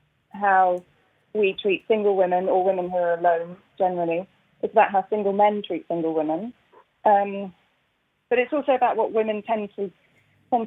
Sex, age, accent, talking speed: female, 30-49, British, 165 wpm